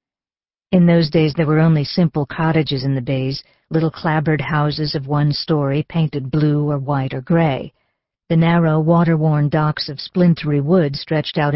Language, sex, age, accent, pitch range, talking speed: English, female, 50-69, American, 145-180 Hz, 165 wpm